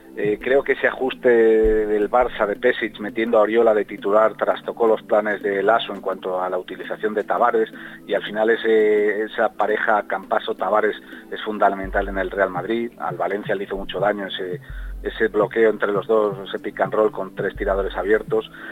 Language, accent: Spanish, Spanish